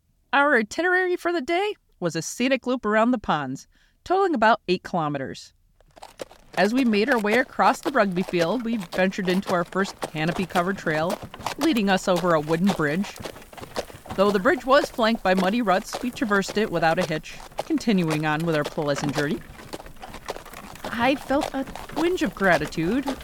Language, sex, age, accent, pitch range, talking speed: English, female, 40-59, American, 170-240 Hz, 165 wpm